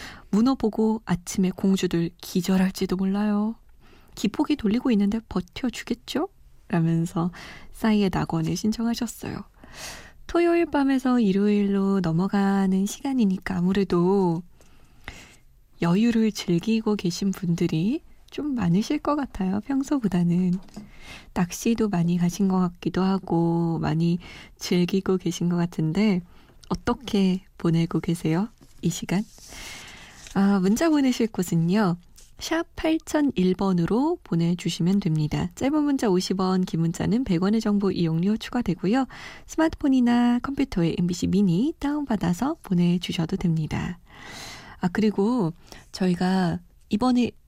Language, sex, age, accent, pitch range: Korean, female, 20-39, native, 175-230 Hz